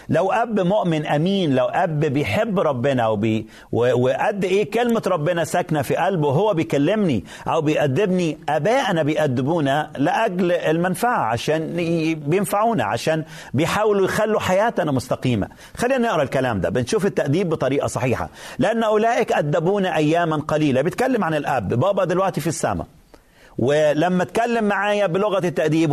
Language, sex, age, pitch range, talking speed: Arabic, male, 40-59, 145-200 Hz, 135 wpm